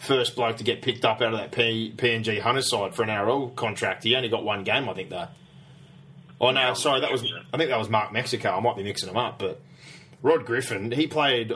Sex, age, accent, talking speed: male, 20-39, Australian, 240 wpm